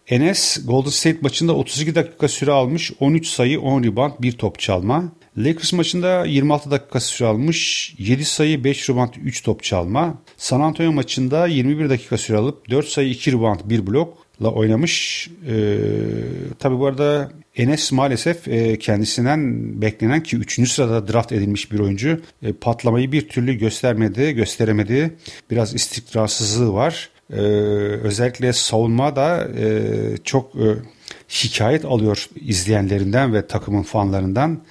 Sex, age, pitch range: male, 40-59, 110-145 Hz